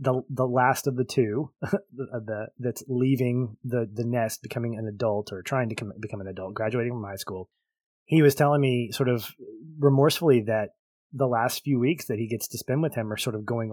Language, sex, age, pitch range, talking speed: English, male, 20-39, 105-135 Hz, 220 wpm